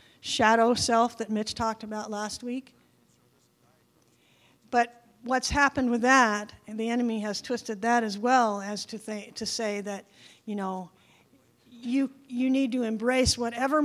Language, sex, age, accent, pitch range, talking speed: English, female, 50-69, American, 215-255 Hz, 150 wpm